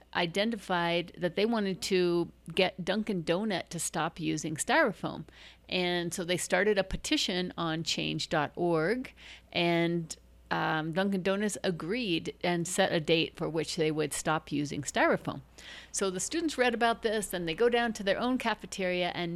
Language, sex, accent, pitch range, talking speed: English, female, American, 165-195 Hz, 160 wpm